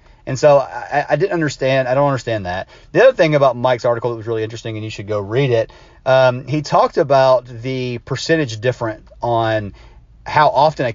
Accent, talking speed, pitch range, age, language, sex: American, 205 wpm, 115-145 Hz, 30-49, English, male